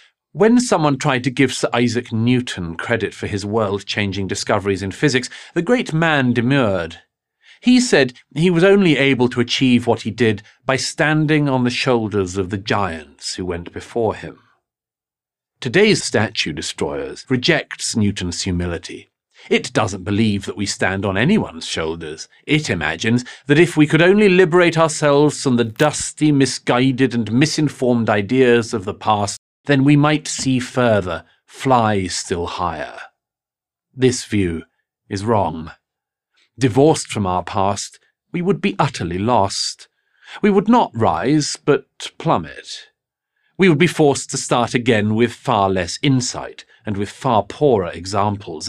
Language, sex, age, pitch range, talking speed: English, male, 40-59, 100-150 Hz, 145 wpm